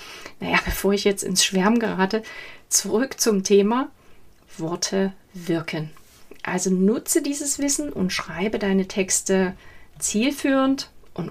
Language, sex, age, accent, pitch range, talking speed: German, female, 30-49, German, 190-260 Hz, 115 wpm